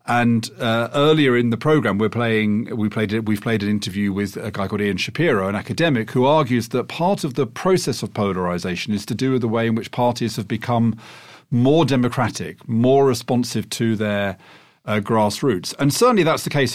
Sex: male